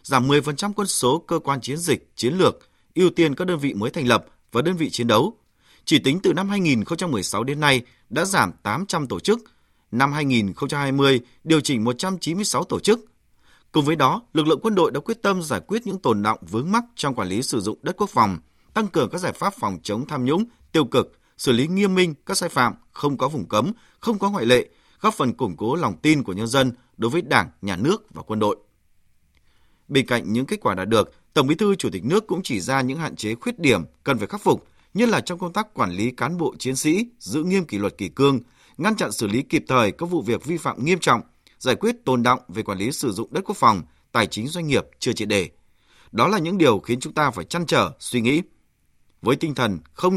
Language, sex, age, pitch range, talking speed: Vietnamese, male, 20-39, 125-185 Hz, 240 wpm